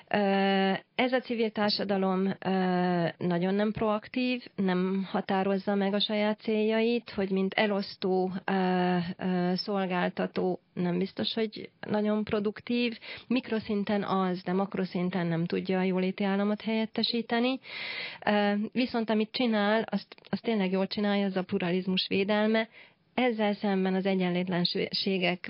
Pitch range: 185-215 Hz